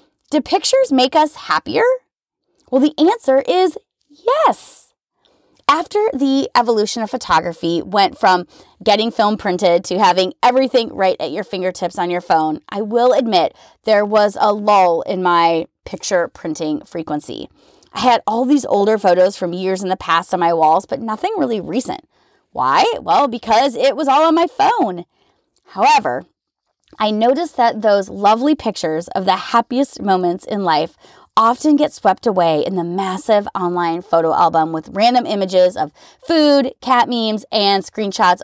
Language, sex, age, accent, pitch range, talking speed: English, female, 20-39, American, 185-280 Hz, 160 wpm